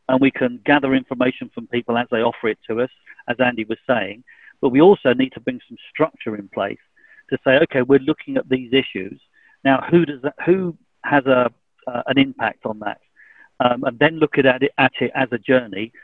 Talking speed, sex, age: 215 wpm, male, 50-69